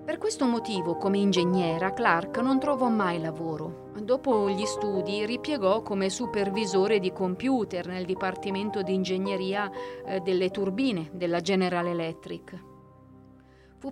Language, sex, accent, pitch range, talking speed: Italian, female, native, 185-235 Hz, 120 wpm